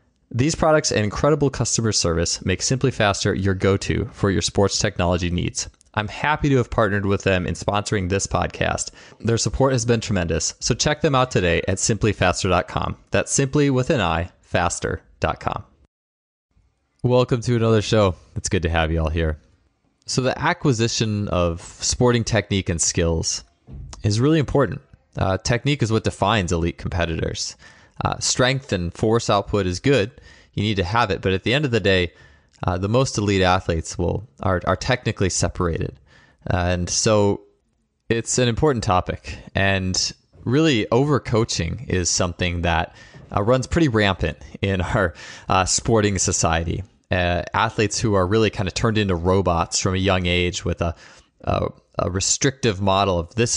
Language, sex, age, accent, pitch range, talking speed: English, male, 20-39, American, 90-115 Hz, 165 wpm